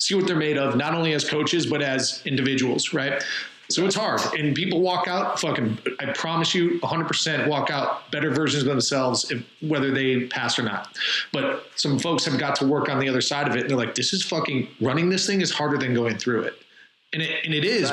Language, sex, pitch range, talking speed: English, male, 130-165 Hz, 235 wpm